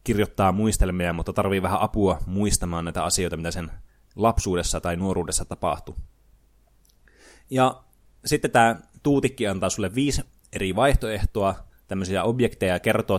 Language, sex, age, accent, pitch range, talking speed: Finnish, male, 20-39, native, 90-110 Hz, 125 wpm